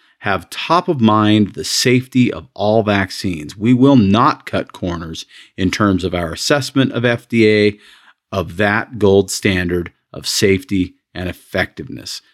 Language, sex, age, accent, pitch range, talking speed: English, male, 40-59, American, 90-110 Hz, 140 wpm